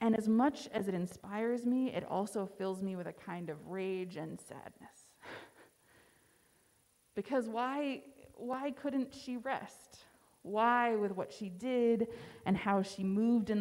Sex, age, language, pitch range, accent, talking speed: female, 20-39, English, 195-235 Hz, American, 150 wpm